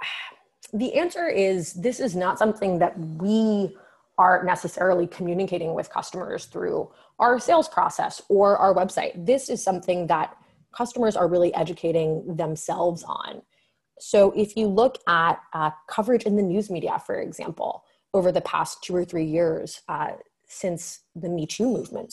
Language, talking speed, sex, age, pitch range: English, 155 wpm, female, 20-39, 170-215 Hz